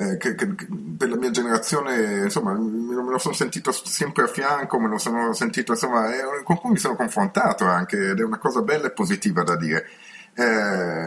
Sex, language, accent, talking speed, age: male, Italian, native, 195 wpm, 40-59